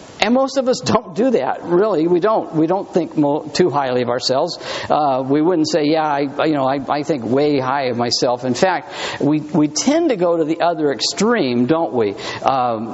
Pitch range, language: 150-240 Hz, English